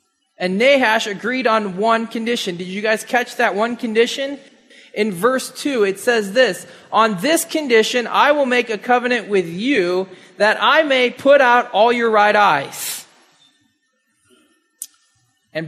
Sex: male